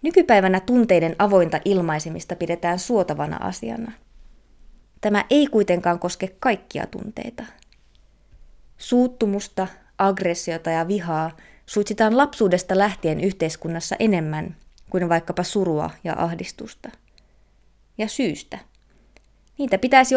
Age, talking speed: 20-39, 90 wpm